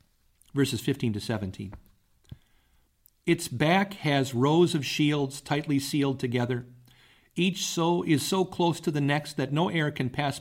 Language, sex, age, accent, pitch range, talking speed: English, male, 50-69, American, 120-150 Hz, 150 wpm